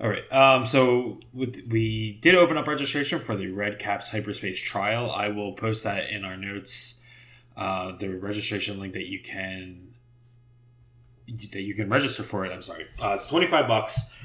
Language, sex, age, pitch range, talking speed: English, male, 20-39, 105-125 Hz, 175 wpm